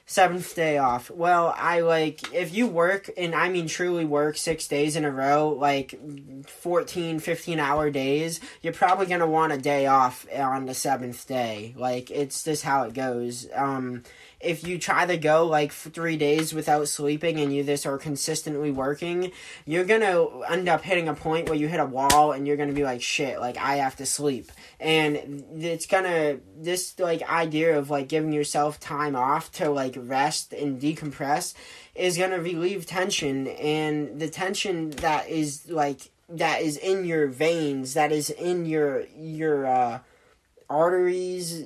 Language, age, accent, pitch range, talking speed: English, 10-29, American, 145-170 Hz, 175 wpm